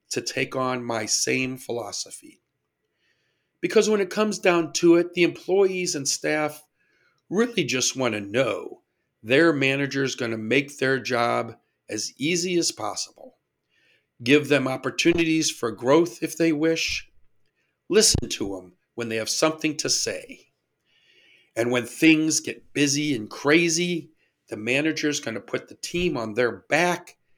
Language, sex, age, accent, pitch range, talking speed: English, male, 50-69, American, 125-180 Hz, 145 wpm